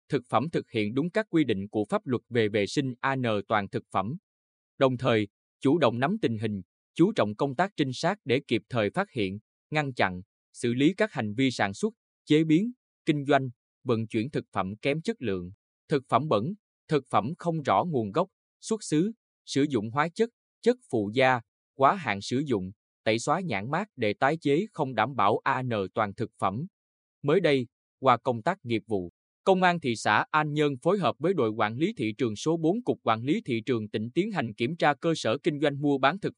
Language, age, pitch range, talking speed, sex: Vietnamese, 20-39, 110-155 Hz, 220 wpm, male